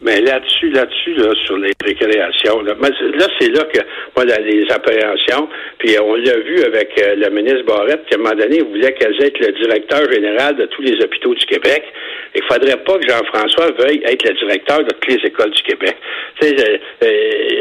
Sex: male